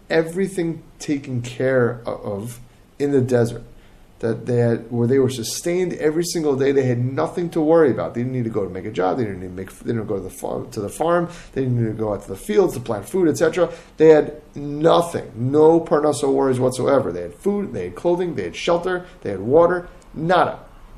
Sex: male